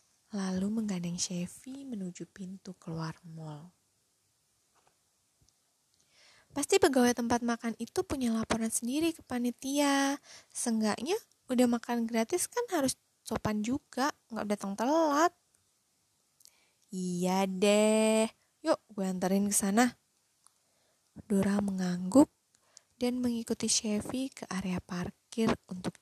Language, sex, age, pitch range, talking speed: Indonesian, female, 20-39, 180-235 Hz, 100 wpm